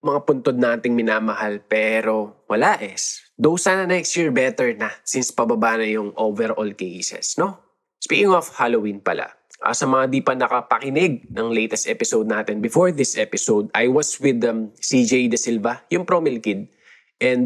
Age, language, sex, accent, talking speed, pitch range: 20-39, Filipino, male, native, 170 wpm, 110-145 Hz